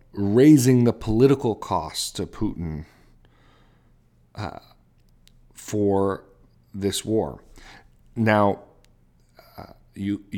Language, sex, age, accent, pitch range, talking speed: English, male, 40-59, American, 85-115 Hz, 70 wpm